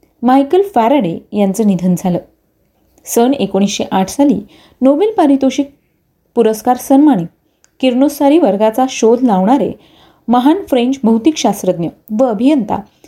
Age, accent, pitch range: 30-49, native, 205-280 Hz